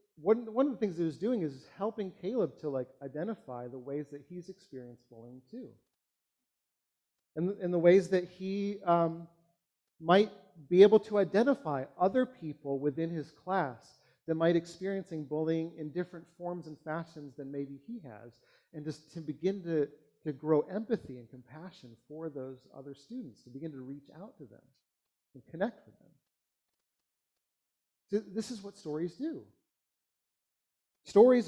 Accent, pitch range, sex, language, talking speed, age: American, 150-210 Hz, male, English, 160 wpm, 40-59